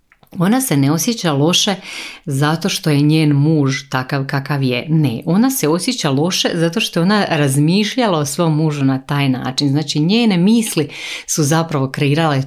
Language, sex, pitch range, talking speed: Croatian, female, 135-165 Hz, 170 wpm